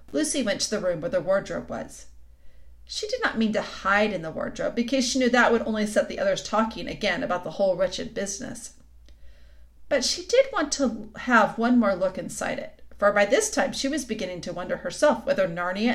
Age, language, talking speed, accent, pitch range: 40-59, English, 215 wpm, American, 180-270 Hz